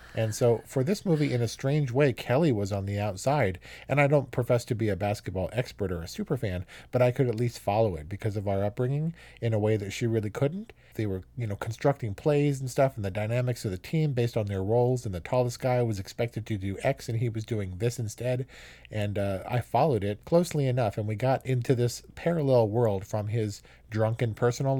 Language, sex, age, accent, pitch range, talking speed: English, male, 40-59, American, 105-130 Hz, 230 wpm